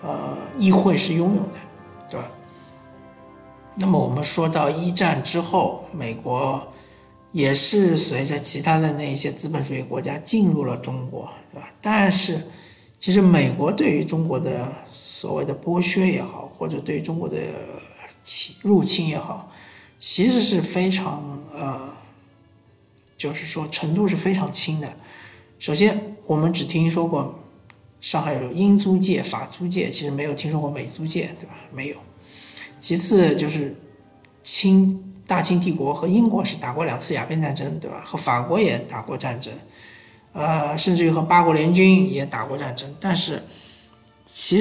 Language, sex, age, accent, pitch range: Chinese, male, 50-69, native, 140-185 Hz